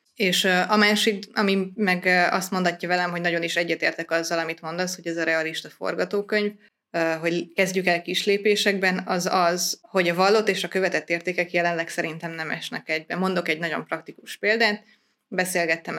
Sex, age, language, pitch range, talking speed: female, 20-39, Hungarian, 165-200 Hz, 165 wpm